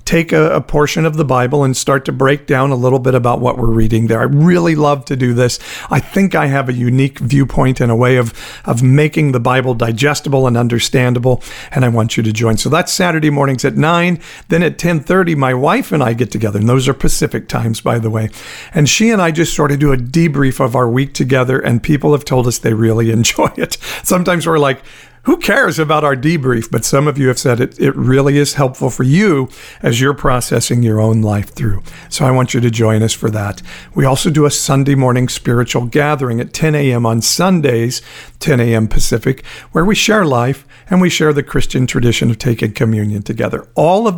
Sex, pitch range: male, 120-150 Hz